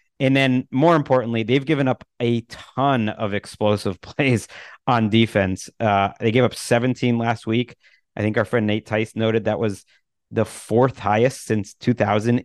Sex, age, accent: male, 30-49, American